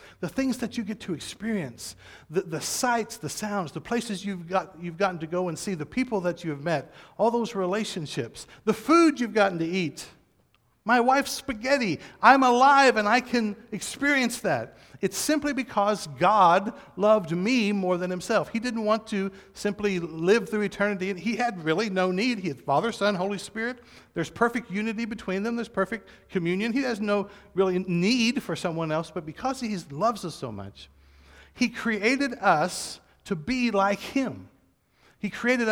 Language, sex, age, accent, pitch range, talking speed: English, male, 50-69, American, 160-225 Hz, 175 wpm